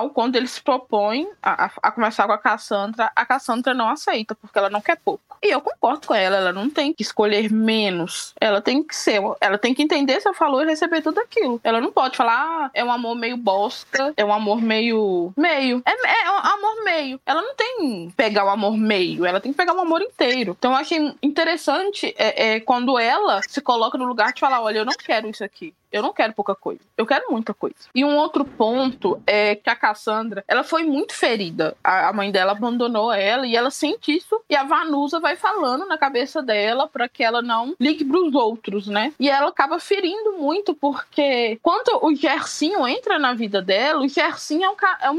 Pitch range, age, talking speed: 225-315 Hz, 20-39, 220 wpm